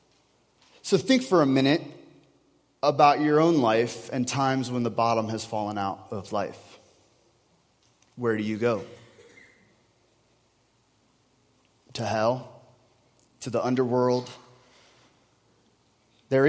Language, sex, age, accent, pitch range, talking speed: English, male, 30-49, American, 110-135 Hz, 105 wpm